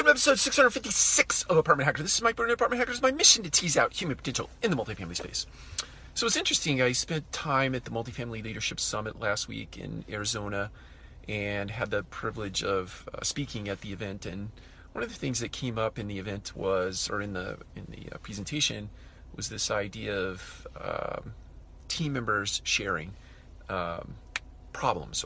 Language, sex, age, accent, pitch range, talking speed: English, male, 40-59, American, 95-130 Hz, 180 wpm